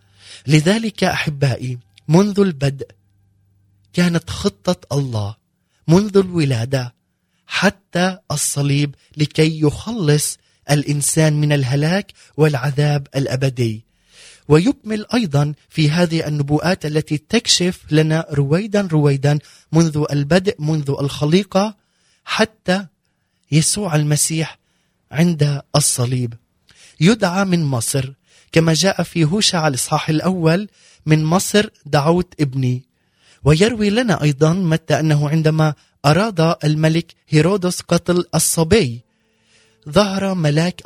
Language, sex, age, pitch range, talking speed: Arabic, male, 30-49, 145-175 Hz, 95 wpm